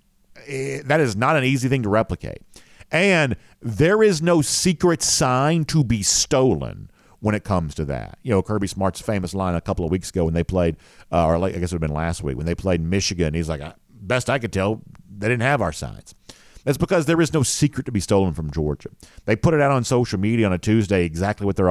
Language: English